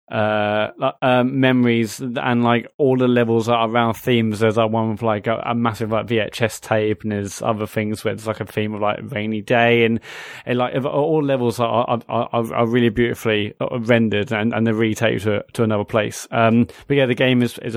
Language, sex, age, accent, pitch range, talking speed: English, male, 20-39, British, 110-120 Hz, 210 wpm